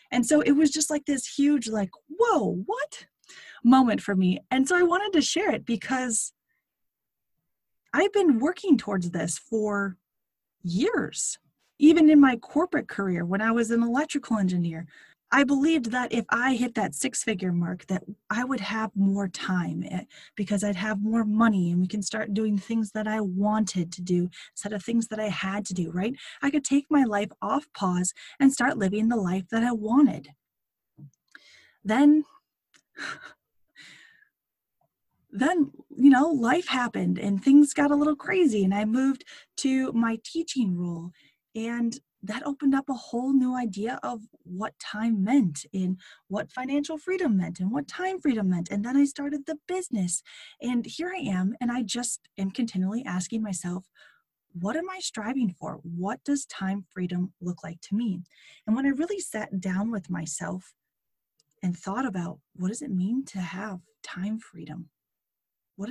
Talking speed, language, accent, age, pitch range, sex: 170 wpm, English, American, 20-39, 185-275 Hz, female